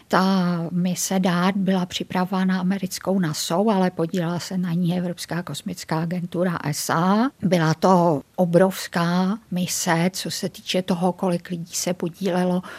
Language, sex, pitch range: Czech, female, 180-195 Hz